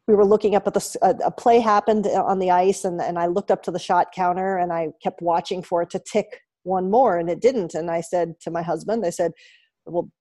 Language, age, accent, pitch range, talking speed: English, 40-59, American, 175-215 Hz, 255 wpm